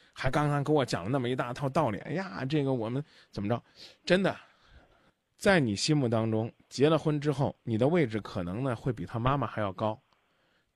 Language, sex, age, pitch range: Chinese, male, 20-39, 110-150 Hz